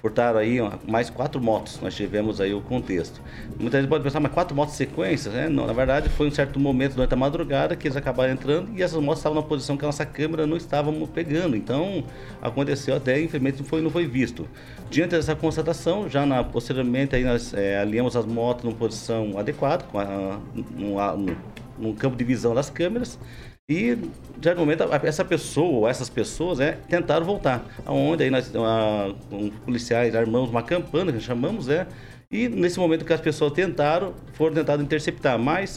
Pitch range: 120-155 Hz